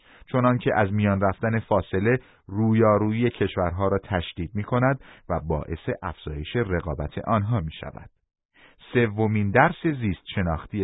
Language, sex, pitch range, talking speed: Persian, male, 85-115 Hz, 115 wpm